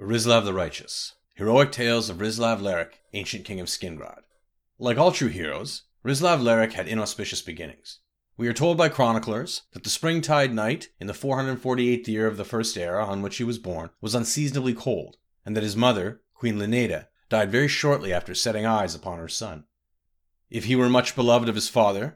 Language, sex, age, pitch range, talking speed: English, male, 40-59, 100-130 Hz, 200 wpm